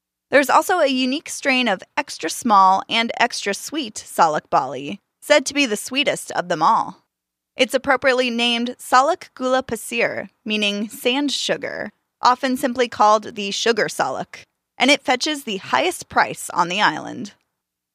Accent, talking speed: American, 145 wpm